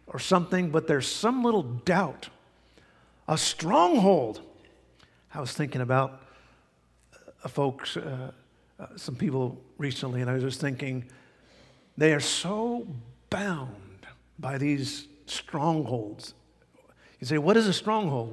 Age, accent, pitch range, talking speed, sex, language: 50-69, American, 130-170 Hz, 125 wpm, male, English